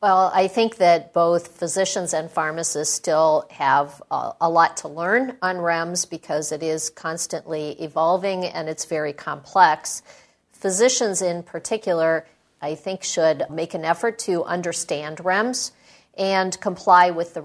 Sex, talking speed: female, 145 wpm